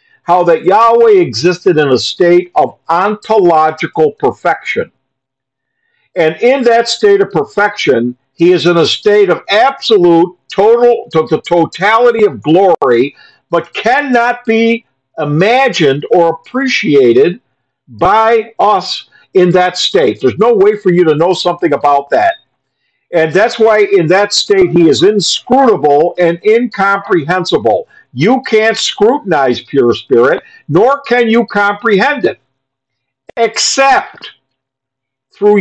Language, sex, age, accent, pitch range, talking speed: English, male, 50-69, American, 155-260 Hz, 120 wpm